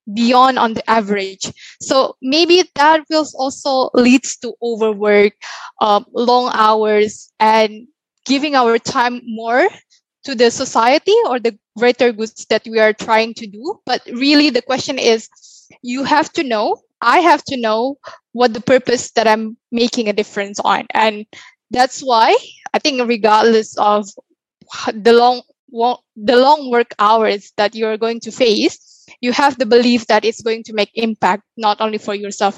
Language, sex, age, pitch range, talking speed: English, female, 10-29, 220-265 Hz, 160 wpm